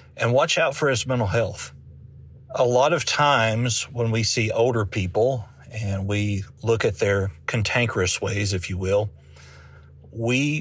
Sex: male